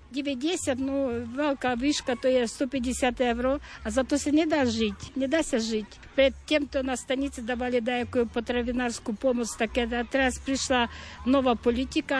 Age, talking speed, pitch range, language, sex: 50-69, 150 wpm, 230-265 Hz, Slovak, female